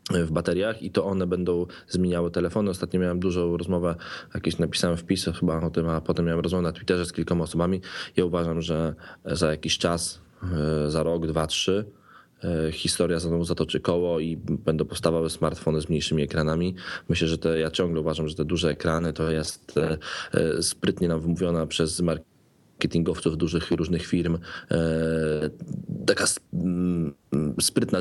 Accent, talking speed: native, 150 wpm